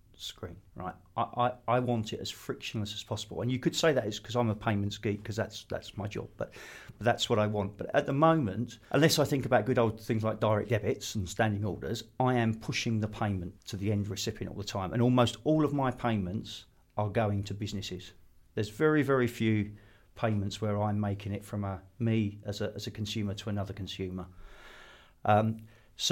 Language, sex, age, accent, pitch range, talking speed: English, male, 40-59, British, 100-120 Hz, 215 wpm